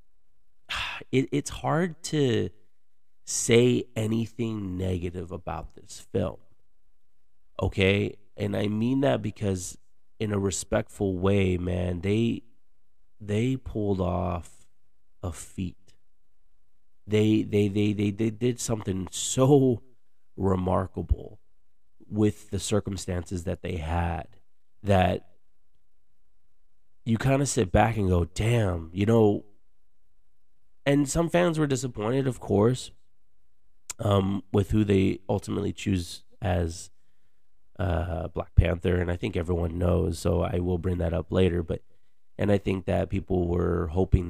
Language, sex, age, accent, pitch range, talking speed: English, male, 30-49, American, 90-110 Hz, 120 wpm